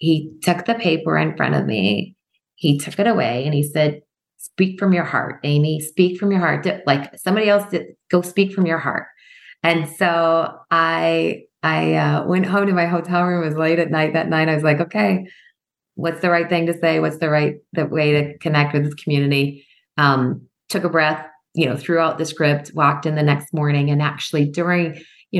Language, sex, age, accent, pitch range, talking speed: English, female, 30-49, American, 135-165 Hz, 210 wpm